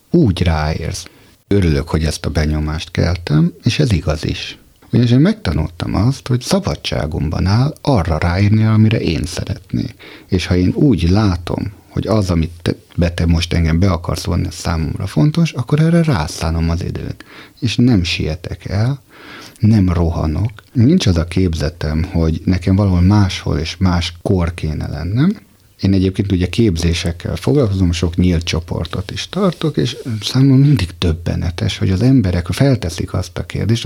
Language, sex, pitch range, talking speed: Hungarian, male, 85-120 Hz, 155 wpm